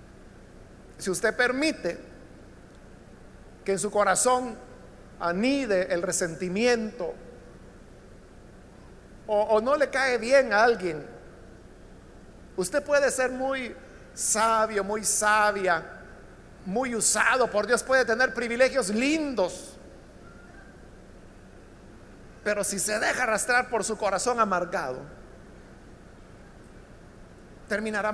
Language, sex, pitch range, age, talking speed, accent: Spanish, male, 200-270 Hz, 50-69, 90 wpm, Mexican